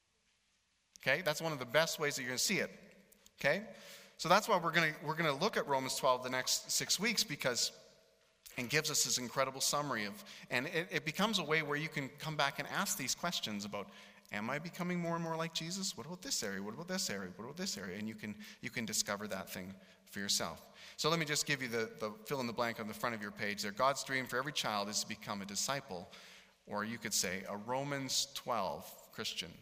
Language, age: English, 30-49